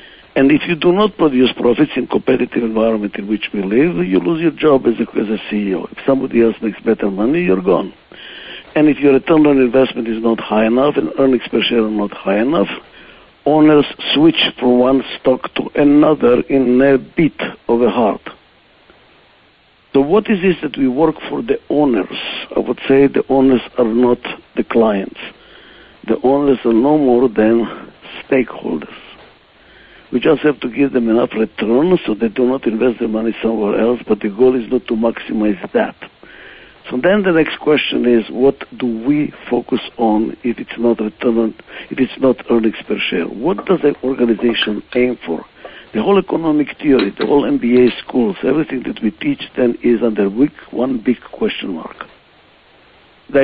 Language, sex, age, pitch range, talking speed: English, male, 60-79, 115-150 Hz, 180 wpm